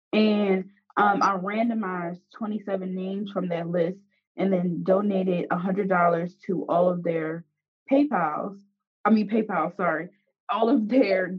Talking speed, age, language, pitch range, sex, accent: 140 wpm, 20-39, English, 180-220 Hz, female, American